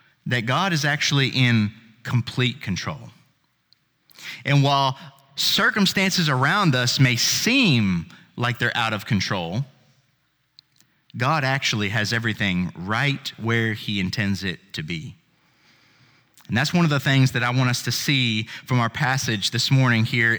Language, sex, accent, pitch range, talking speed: English, male, American, 115-155 Hz, 140 wpm